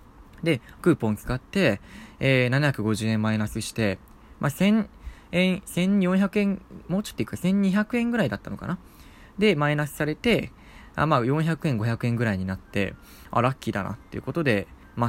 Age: 20-39